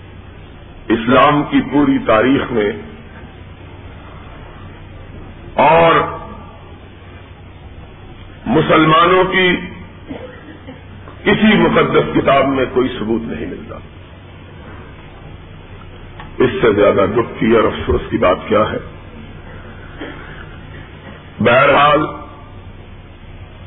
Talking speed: 70 wpm